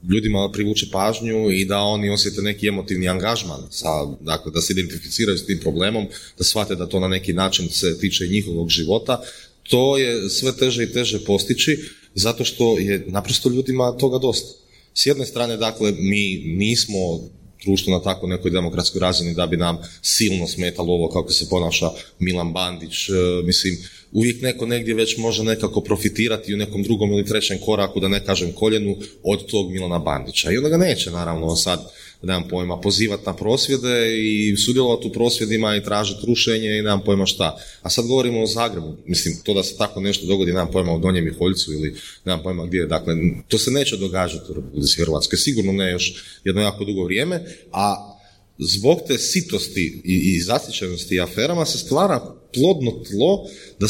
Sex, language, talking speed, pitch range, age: male, Croatian, 175 wpm, 90-110 Hz, 30-49